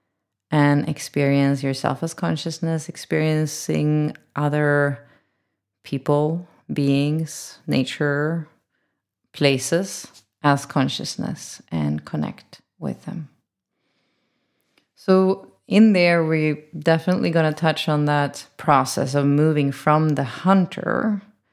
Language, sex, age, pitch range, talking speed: English, female, 30-49, 135-155 Hz, 90 wpm